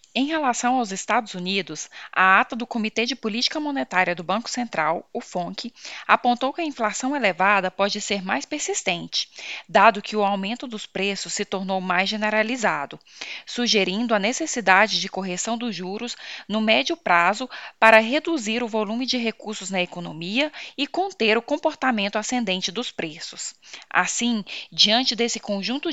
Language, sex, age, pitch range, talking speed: Portuguese, female, 10-29, 200-245 Hz, 150 wpm